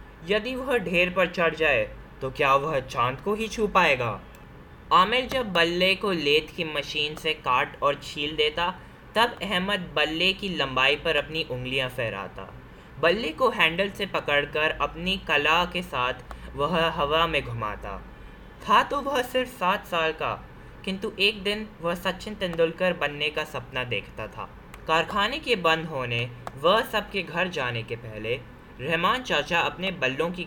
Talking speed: 160 wpm